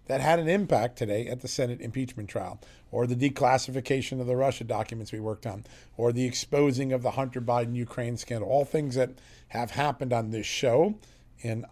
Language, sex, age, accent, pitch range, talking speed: English, male, 40-59, American, 115-145 Hz, 190 wpm